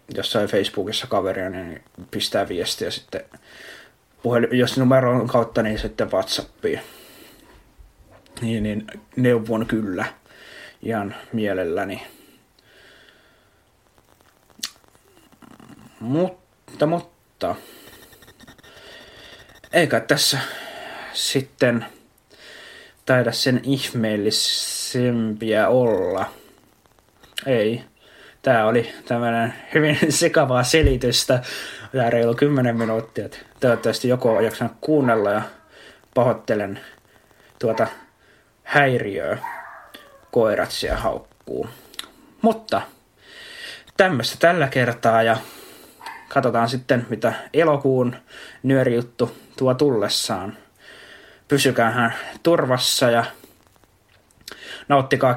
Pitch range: 115-140 Hz